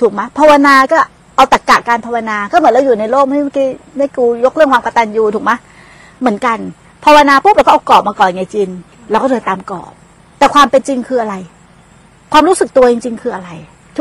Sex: female